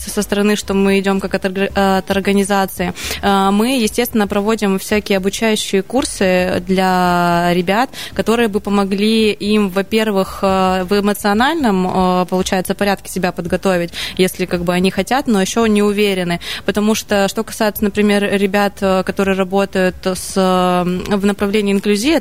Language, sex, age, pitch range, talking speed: Russian, female, 20-39, 185-210 Hz, 120 wpm